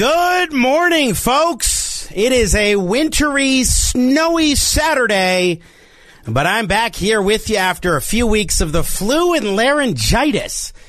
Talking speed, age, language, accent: 130 wpm, 40-59, English, American